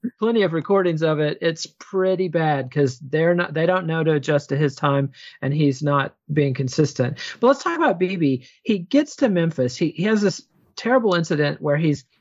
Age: 40-59